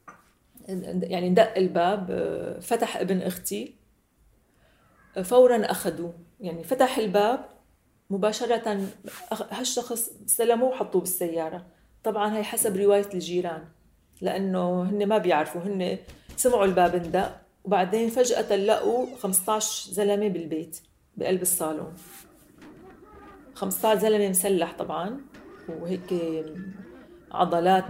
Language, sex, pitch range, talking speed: Arabic, female, 175-220 Hz, 95 wpm